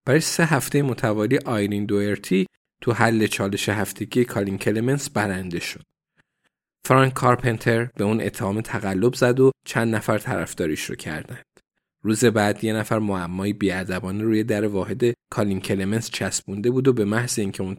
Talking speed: 150 wpm